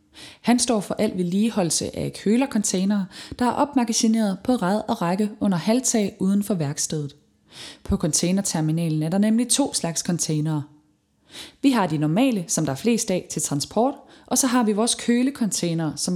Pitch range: 165-215 Hz